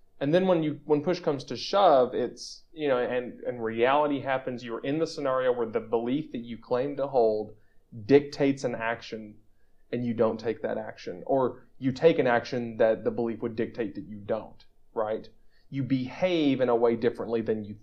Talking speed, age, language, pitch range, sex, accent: 200 wpm, 30-49, English, 110-140 Hz, male, American